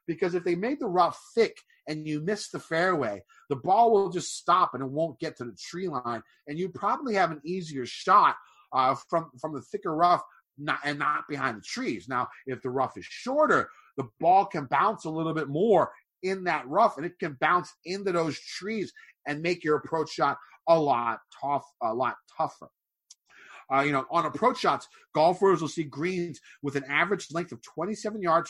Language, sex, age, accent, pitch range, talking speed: English, male, 30-49, American, 130-180 Hz, 200 wpm